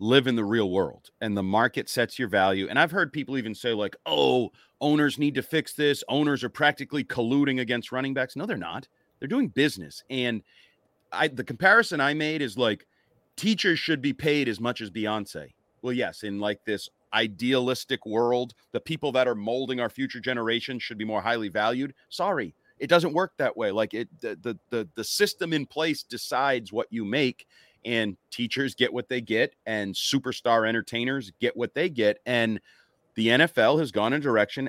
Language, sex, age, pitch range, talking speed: English, male, 30-49, 115-155 Hz, 195 wpm